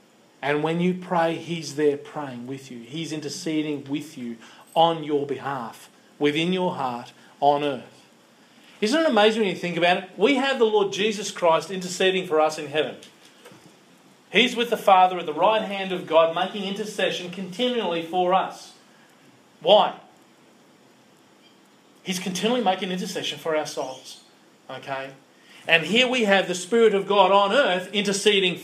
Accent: Australian